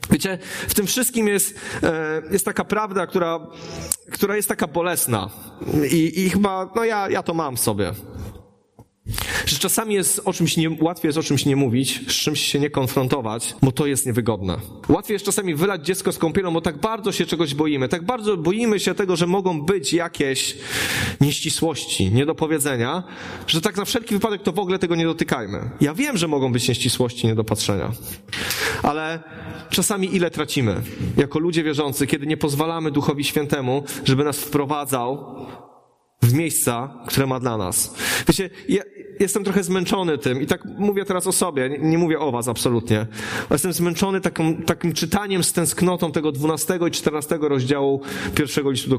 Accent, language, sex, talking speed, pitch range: native, Polish, male, 170 wpm, 135-190 Hz